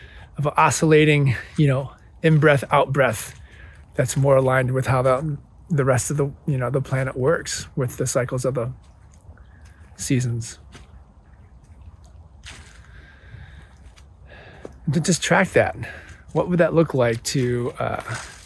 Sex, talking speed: male, 135 wpm